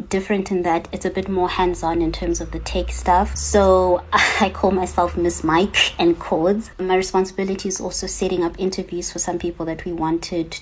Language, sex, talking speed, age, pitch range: English, female, 200 wpm, 20-39, 165-190 Hz